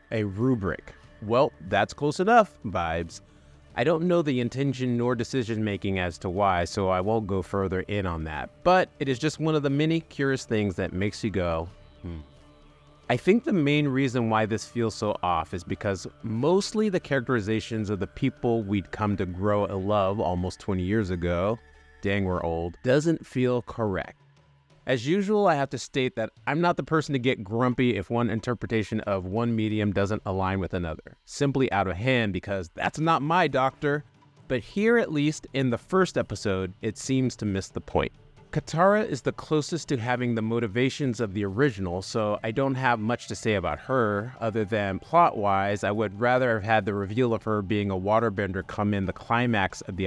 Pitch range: 100-135 Hz